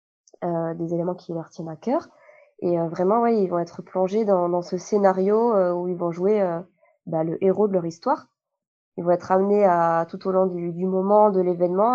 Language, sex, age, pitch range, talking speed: French, female, 20-39, 175-215 Hz, 215 wpm